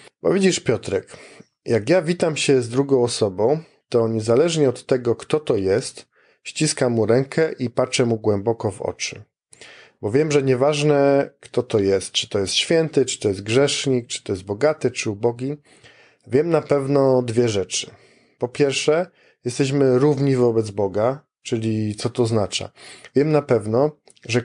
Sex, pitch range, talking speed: male, 115-140 Hz, 160 wpm